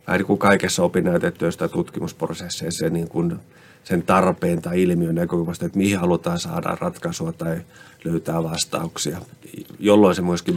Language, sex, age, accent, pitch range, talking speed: Finnish, male, 30-49, native, 85-120 Hz, 130 wpm